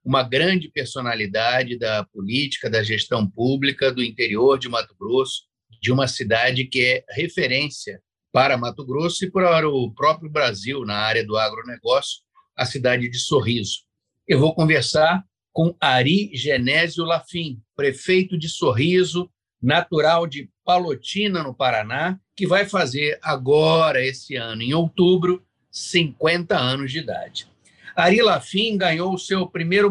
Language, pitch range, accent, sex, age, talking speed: Portuguese, 130-185 Hz, Brazilian, male, 50-69, 135 wpm